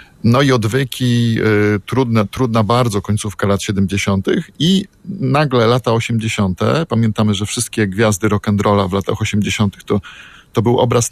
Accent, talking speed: native, 150 wpm